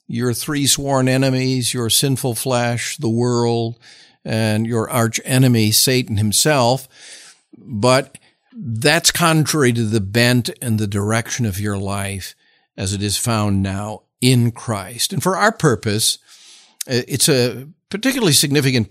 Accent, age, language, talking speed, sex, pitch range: American, 50-69, English, 130 wpm, male, 105-135 Hz